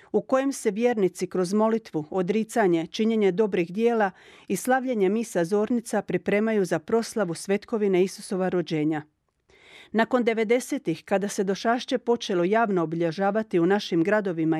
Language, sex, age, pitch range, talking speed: Croatian, female, 40-59, 185-235 Hz, 125 wpm